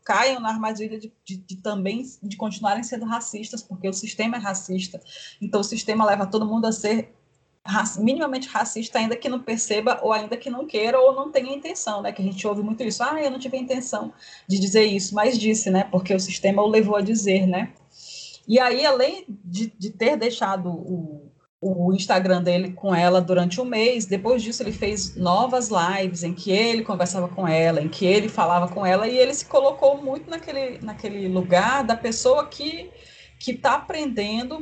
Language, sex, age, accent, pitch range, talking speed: Portuguese, female, 20-39, Brazilian, 190-255 Hz, 200 wpm